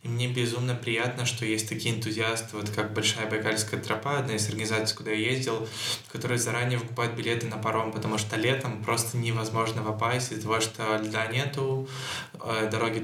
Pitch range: 110-120 Hz